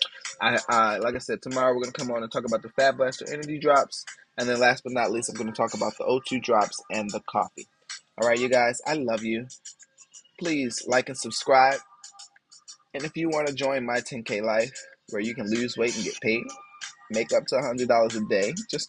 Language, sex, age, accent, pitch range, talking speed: English, male, 20-39, American, 115-140 Hz, 225 wpm